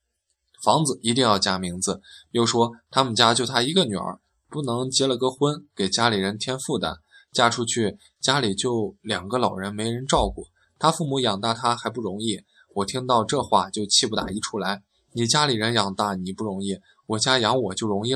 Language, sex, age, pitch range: Chinese, male, 20-39, 100-130 Hz